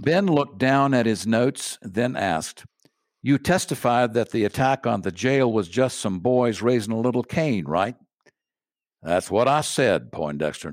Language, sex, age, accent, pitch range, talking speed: English, male, 60-79, American, 115-160 Hz, 170 wpm